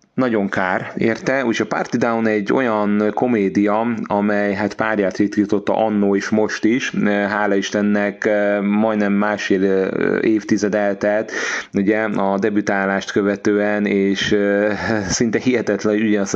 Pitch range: 100-105 Hz